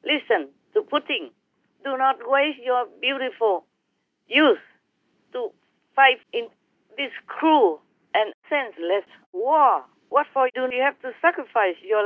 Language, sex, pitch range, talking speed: English, female, 240-330 Hz, 125 wpm